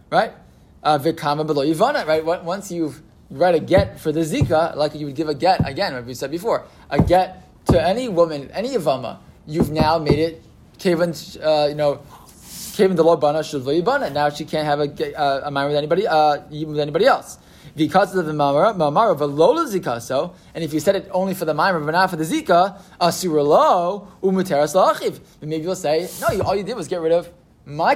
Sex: male